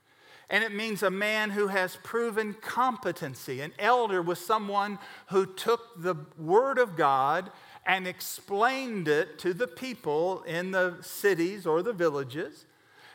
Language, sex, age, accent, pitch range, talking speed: English, male, 50-69, American, 165-215 Hz, 140 wpm